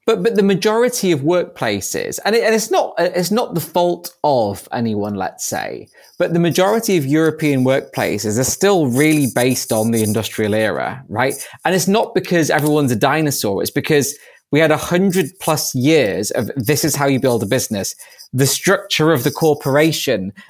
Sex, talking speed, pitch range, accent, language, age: male, 180 wpm, 135-175 Hz, British, English, 20-39